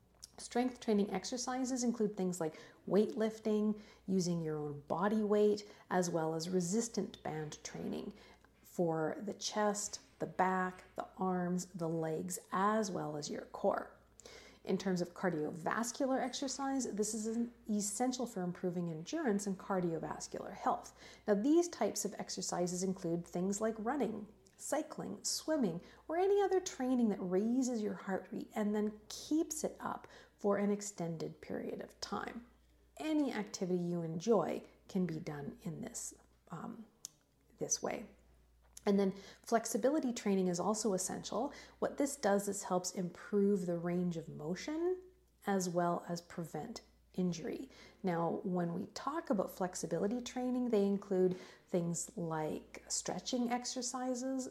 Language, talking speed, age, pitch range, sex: English, 135 wpm, 40-59, 180-235 Hz, female